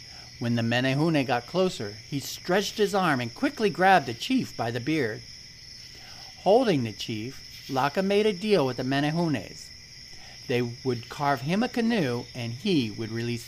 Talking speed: 165 wpm